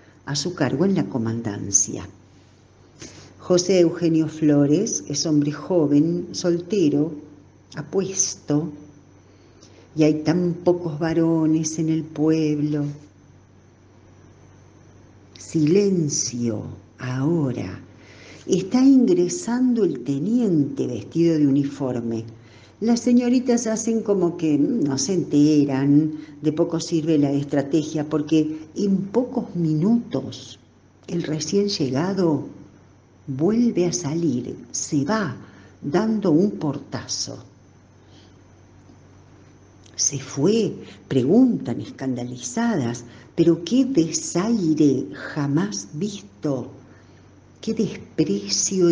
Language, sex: Spanish, female